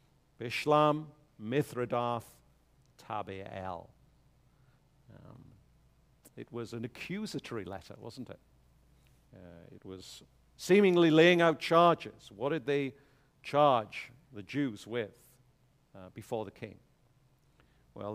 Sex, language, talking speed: male, English, 100 wpm